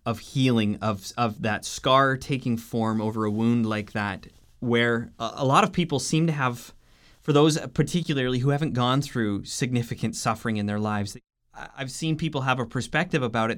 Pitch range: 115-155 Hz